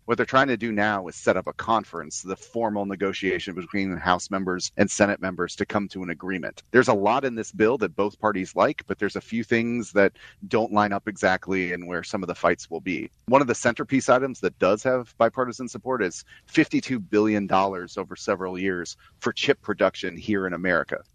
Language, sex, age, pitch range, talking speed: English, male, 30-49, 95-110 Hz, 215 wpm